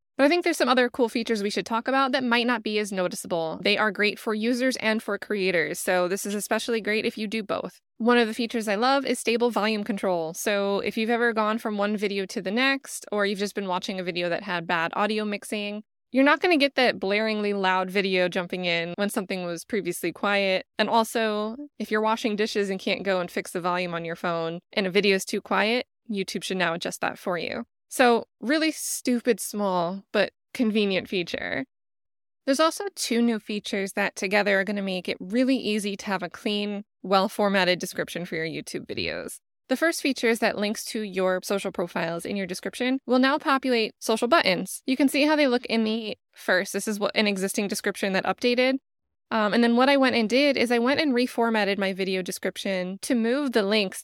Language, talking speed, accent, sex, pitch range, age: English, 220 wpm, American, female, 195-240 Hz, 20-39